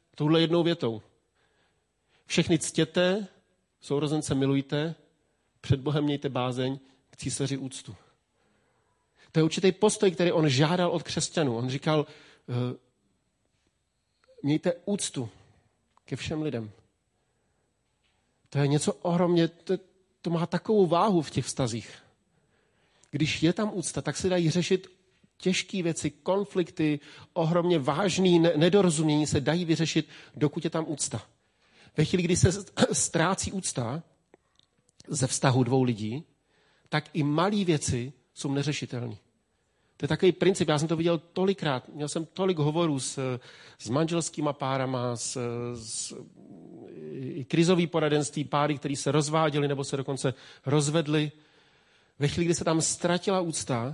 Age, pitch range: 40-59, 135-170 Hz